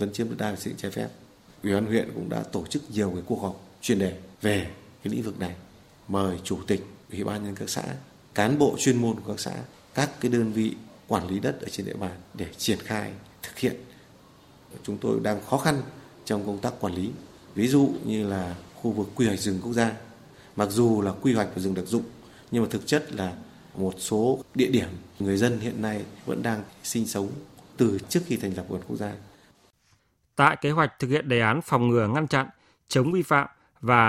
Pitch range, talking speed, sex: 105-140 Hz, 225 wpm, male